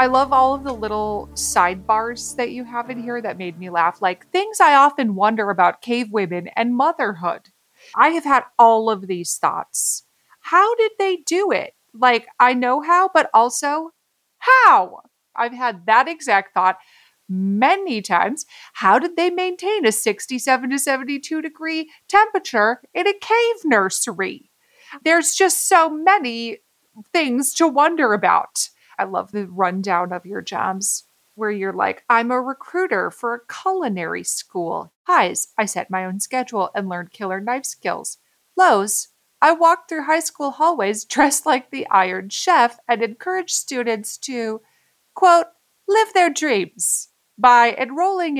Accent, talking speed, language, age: American, 155 wpm, English, 30-49